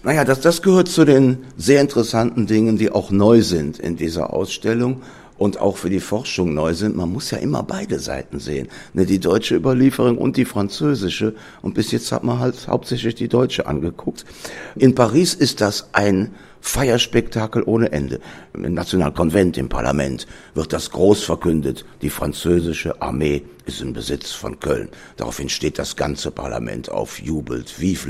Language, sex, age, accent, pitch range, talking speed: German, male, 60-79, German, 75-115 Hz, 165 wpm